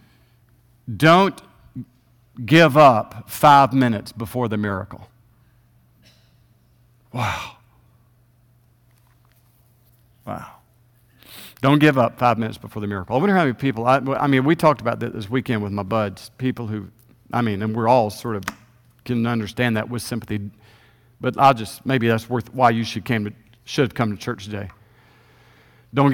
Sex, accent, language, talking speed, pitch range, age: male, American, English, 155 wpm, 120-160 Hz, 50-69